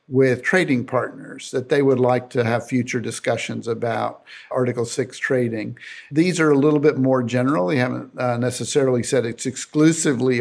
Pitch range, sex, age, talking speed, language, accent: 120-135 Hz, male, 50-69, 165 wpm, English, American